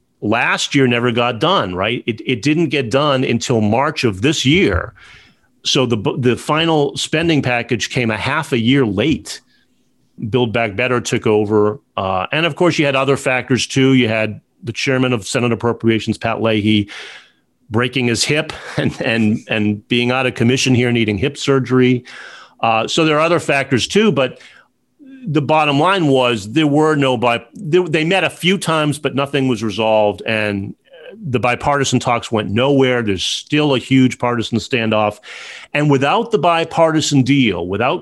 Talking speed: 170 wpm